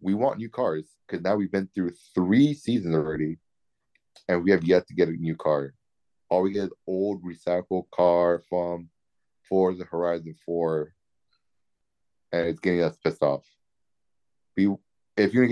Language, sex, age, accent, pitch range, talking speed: English, male, 30-49, American, 85-100 Hz, 170 wpm